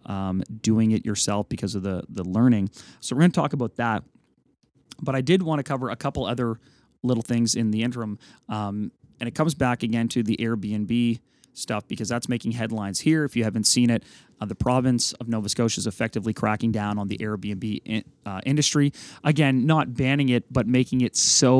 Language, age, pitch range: English, 30-49, 105-125 Hz